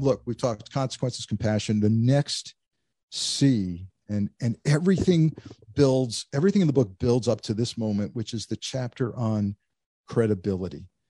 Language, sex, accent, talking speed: English, male, American, 145 wpm